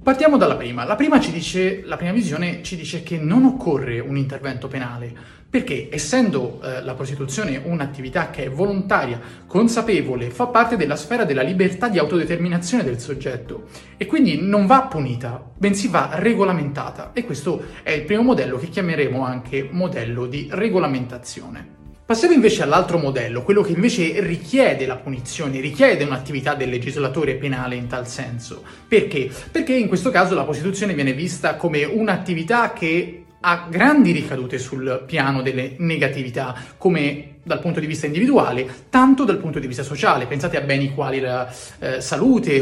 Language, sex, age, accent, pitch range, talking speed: Italian, male, 30-49, native, 135-210 Hz, 160 wpm